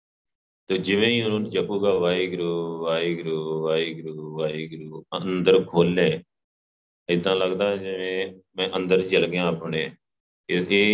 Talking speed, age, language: 115 wpm, 30-49, Punjabi